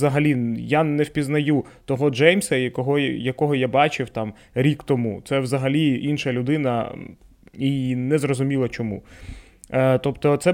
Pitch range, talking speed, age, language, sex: 120-150 Hz, 130 wpm, 20-39, Ukrainian, male